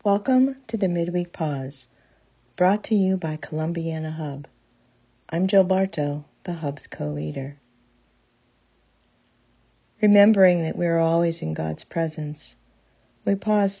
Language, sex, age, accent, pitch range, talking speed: English, female, 50-69, American, 135-185 Hz, 115 wpm